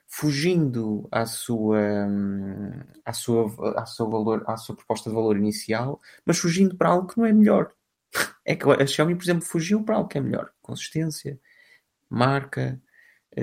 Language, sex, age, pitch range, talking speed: Portuguese, male, 20-39, 110-145 Hz, 165 wpm